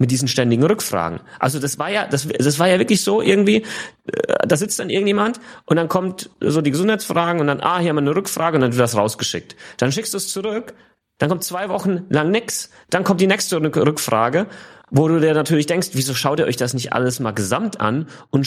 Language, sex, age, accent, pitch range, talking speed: German, male, 30-49, German, 125-180 Hz, 225 wpm